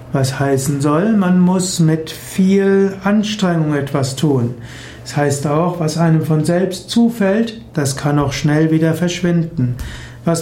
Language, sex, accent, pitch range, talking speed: German, male, German, 150-185 Hz, 145 wpm